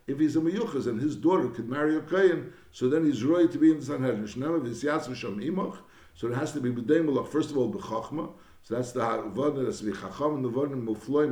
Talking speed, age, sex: 205 wpm, 60-79, male